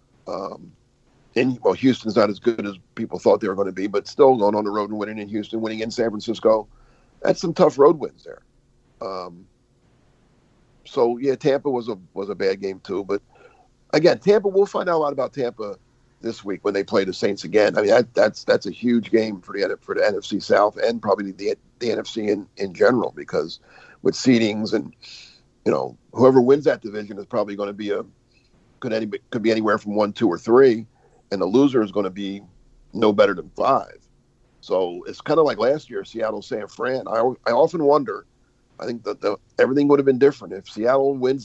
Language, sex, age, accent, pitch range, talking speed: English, male, 50-69, American, 105-135 Hz, 205 wpm